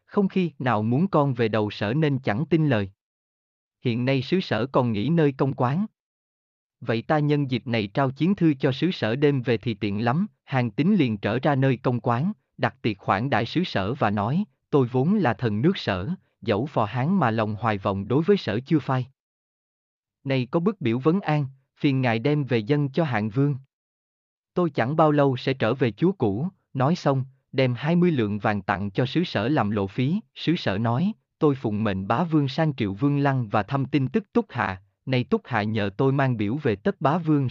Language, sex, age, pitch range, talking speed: Vietnamese, male, 20-39, 115-160 Hz, 220 wpm